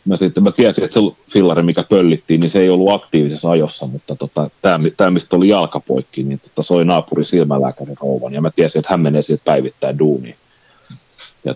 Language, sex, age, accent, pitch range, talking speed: Finnish, male, 40-59, native, 75-95 Hz, 195 wpm